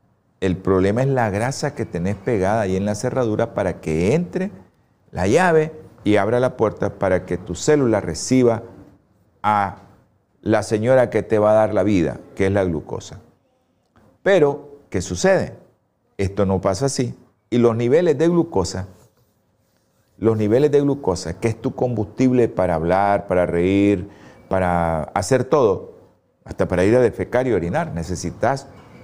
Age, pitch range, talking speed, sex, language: 40-59, 100-135 Hz, 155 wpm, male, Spanish